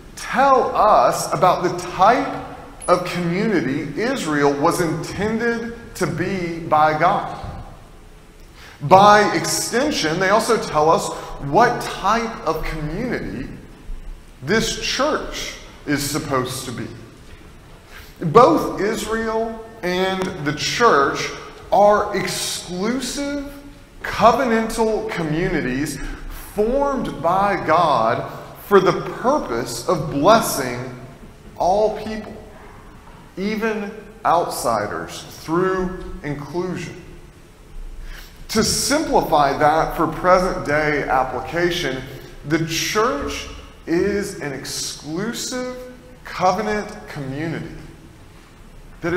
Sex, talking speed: male, 80 wpm